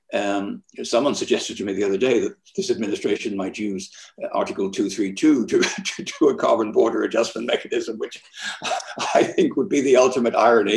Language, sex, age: English, male, 60-79